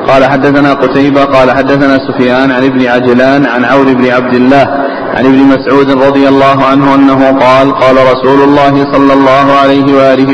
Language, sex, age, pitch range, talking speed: Arabic, male, 40-59, 135-140 Hz, 170 wpm